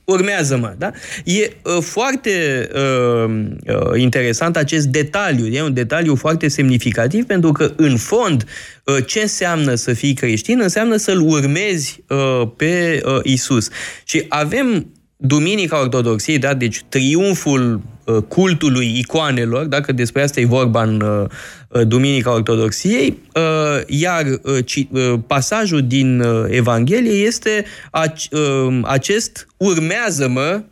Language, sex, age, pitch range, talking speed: Romanian, male, 20-39, 125-180 Hz, 125 wpm